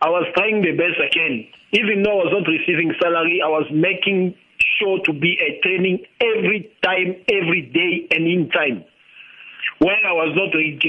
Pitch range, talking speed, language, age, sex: 175-210 Hz, 180 wpm, English, 50-69, male